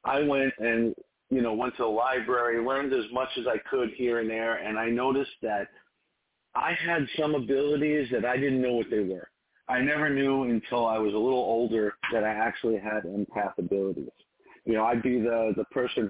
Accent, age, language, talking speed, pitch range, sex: American, 40-59, English, 205 wpm, 105-130 Hz, male